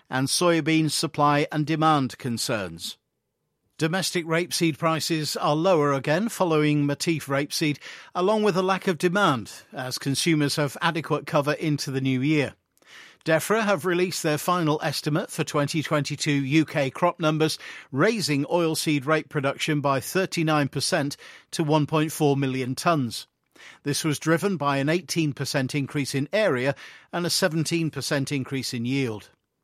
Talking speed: 135 wpm